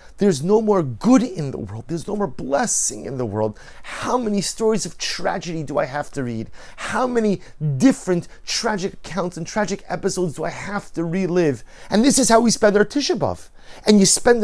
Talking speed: 200 wpm